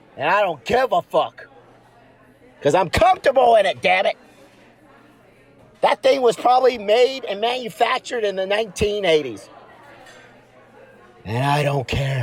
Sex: male